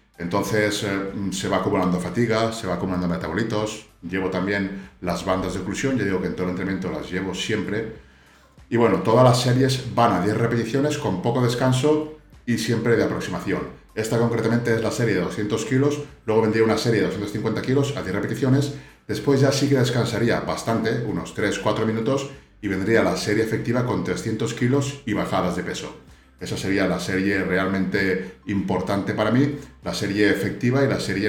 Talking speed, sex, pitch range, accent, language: 180 wpm, male, 95-120 Hz, Spanish, Spanish